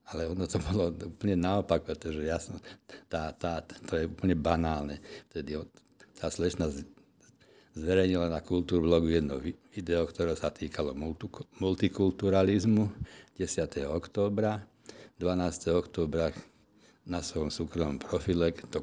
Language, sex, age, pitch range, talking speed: Slovak, male, 60-79, 80-95 Hz, 115 wpm